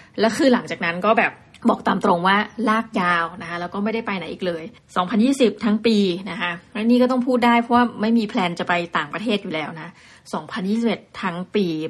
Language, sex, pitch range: Thai, female, 180-235 Hz